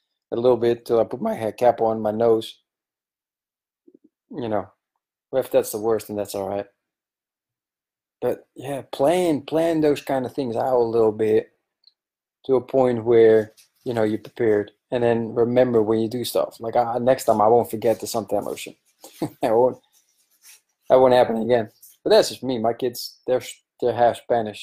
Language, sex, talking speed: English, male, 180 wpm